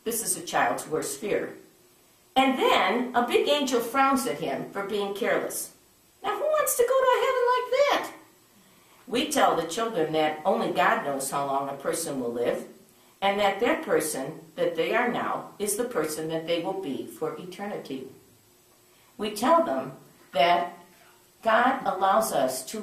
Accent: American